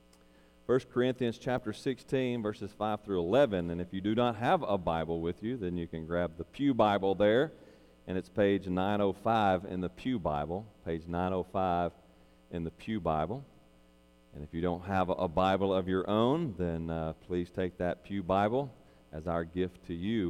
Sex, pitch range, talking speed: male, 80-115 Hz, 185 wpm